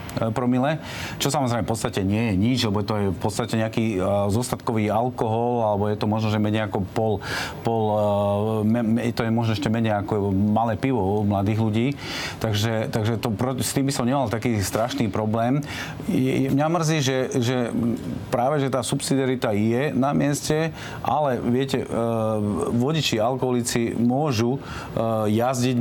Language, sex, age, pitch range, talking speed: Slovak, male, 40-59, 110-125 Hz, 150 wpm